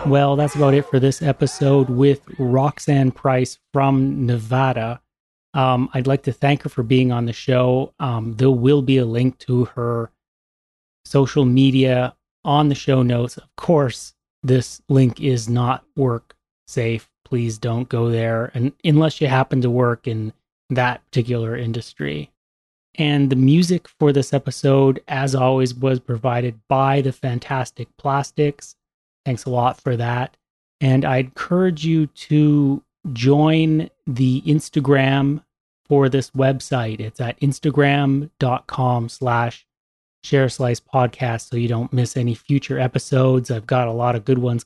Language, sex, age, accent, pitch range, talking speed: English, male, 30-49, American, 125-140 Hz, 145 wpm